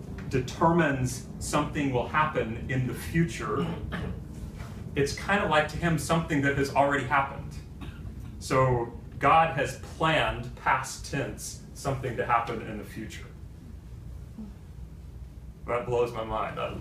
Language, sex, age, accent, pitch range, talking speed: English, male, 30-49, American, 100-140 Hz, 125 wpm